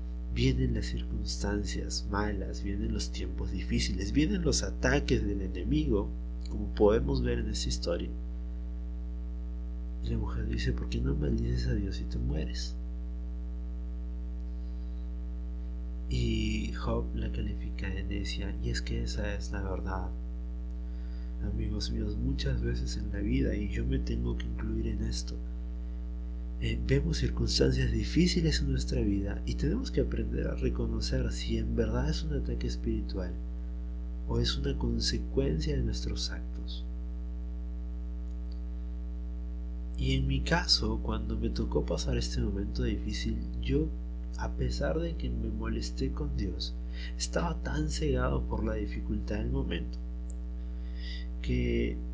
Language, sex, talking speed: Spanish, male, 130 wpm